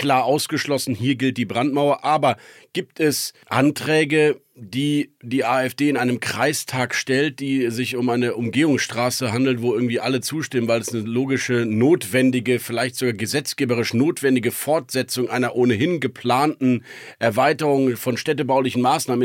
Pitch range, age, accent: 125-150 Hz, 50-69, German